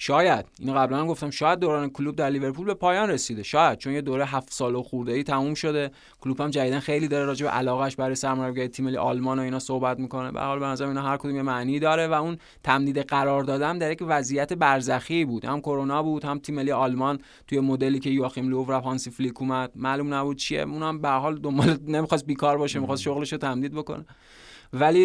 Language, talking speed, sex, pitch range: Persian, 220 wpm, male, 130-155 Hz